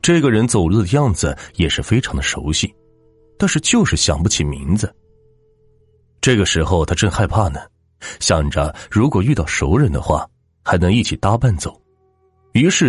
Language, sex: Chinese, male